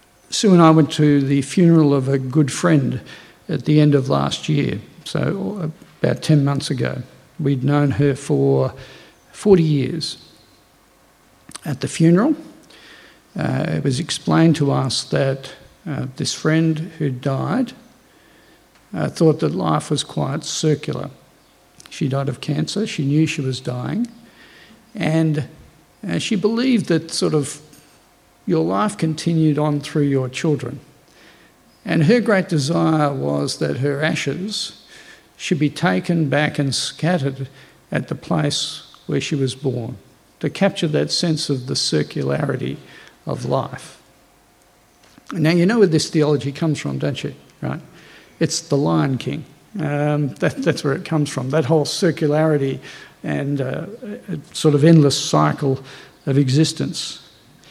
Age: 50-69